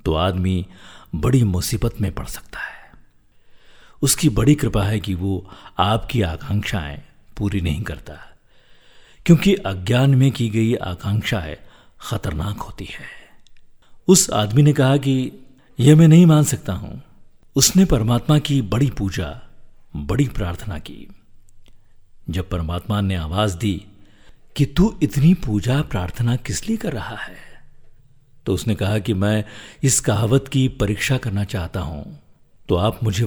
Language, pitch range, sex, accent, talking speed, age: Hindi, 95-130 Hz, male, native, 140 wpm, 50-69